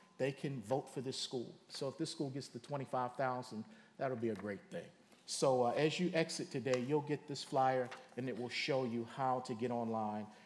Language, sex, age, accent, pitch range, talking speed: English, male, 40-59, American, 125-165 Hz, 220 wpm